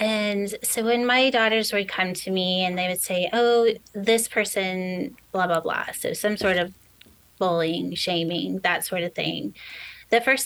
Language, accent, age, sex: English, American, 30-49, female